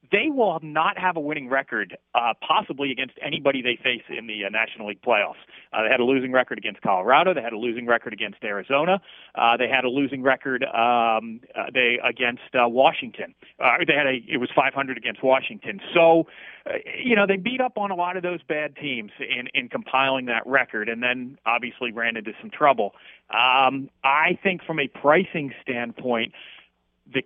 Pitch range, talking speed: 115-155 Hz, 195 wpm